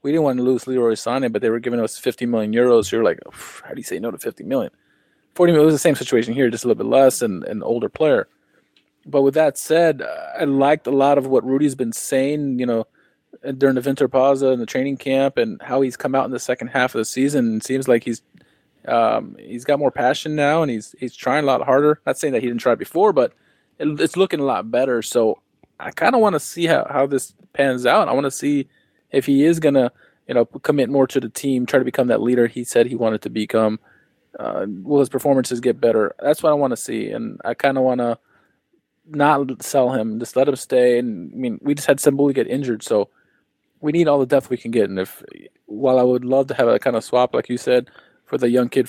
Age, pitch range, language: 20-39, 120-145 Hz, English